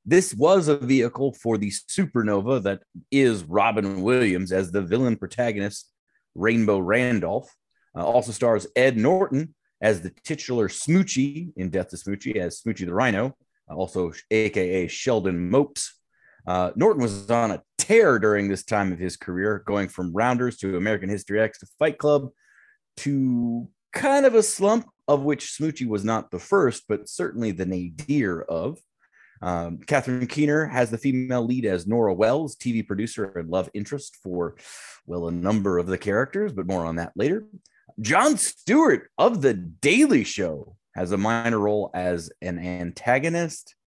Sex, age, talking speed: male, 30-49, 160 wpm